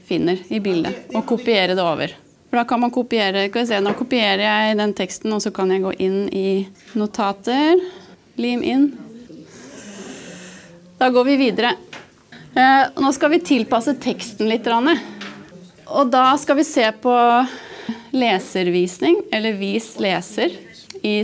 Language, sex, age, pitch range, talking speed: Danish, female, 30-49, 205-270 Hz, 140 wpm